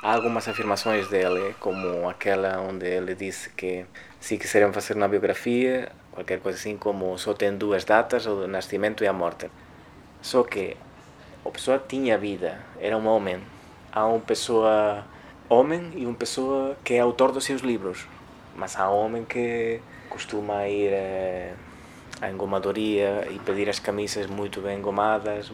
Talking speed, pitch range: 155 wpm, 95-110 Hz